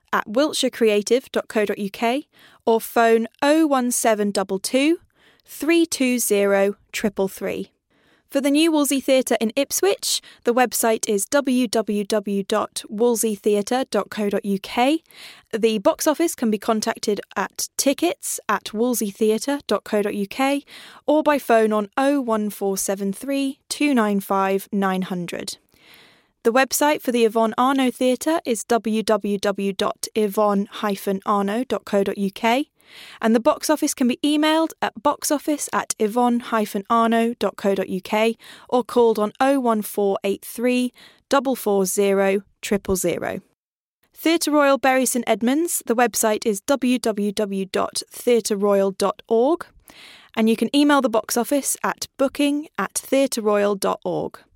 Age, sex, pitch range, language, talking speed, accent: 10-29, female, 205-270 Hz, English, 85 wpm, British